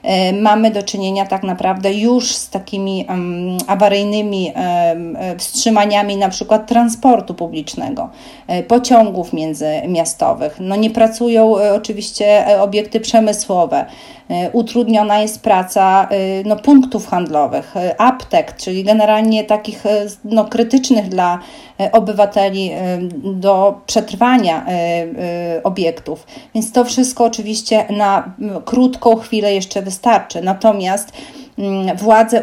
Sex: female